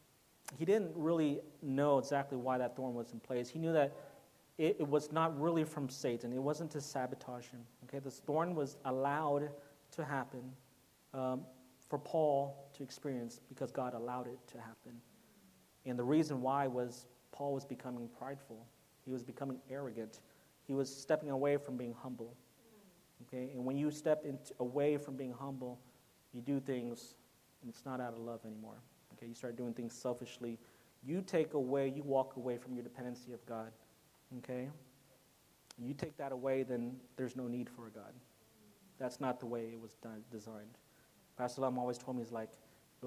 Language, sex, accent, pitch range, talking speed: English, male, American, 120-140 Hz, 180 wpm